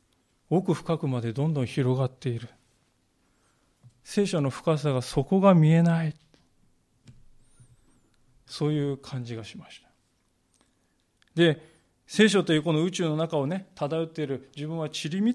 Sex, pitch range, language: male, 125-170 Hz, Japanese